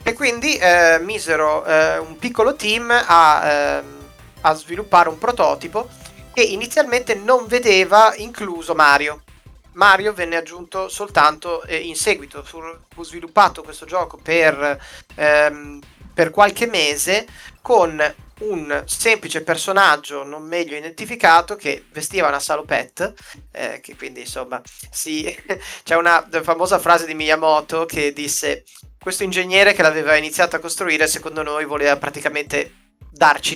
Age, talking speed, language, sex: 30-49, 130 wpm, Italian, male